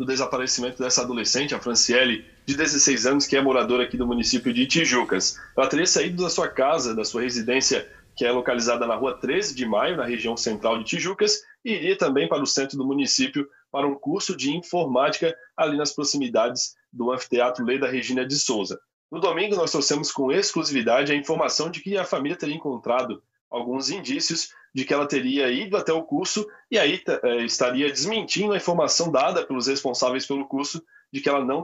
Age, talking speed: 20-39, 190 wpm